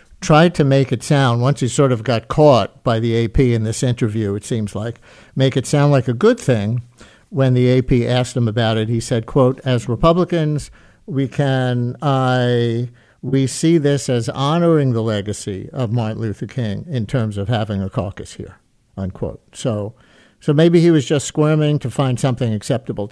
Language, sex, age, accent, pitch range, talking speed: English, male, 60-79, American, 115-145 Hz, 185 wpm